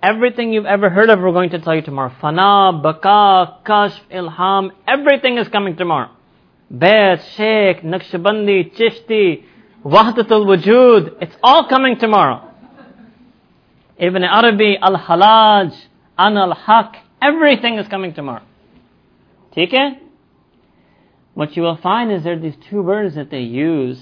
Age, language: 40-59, English